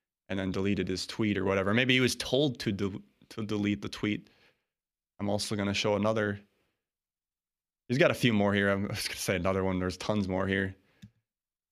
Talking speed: 195 wpm